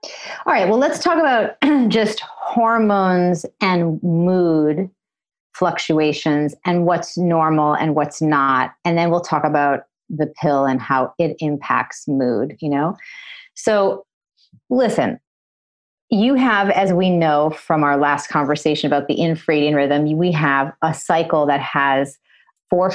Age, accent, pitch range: 30-49, American, 150-195 Hz